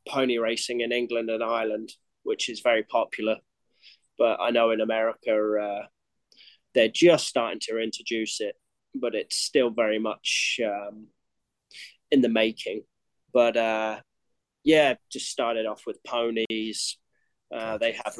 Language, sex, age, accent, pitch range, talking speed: English, male, 20-39, British, 110-120 Hz, 140 wpm